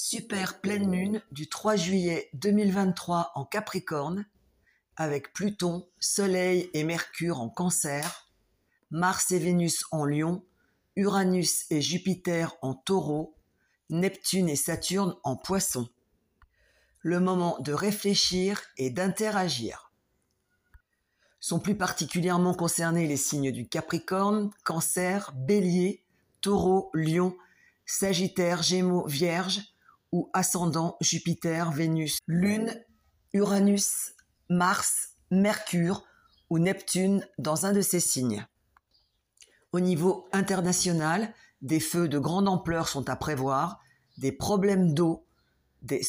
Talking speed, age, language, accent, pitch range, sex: 105 wpm, 50-69, French, French, 155-190 Hz, female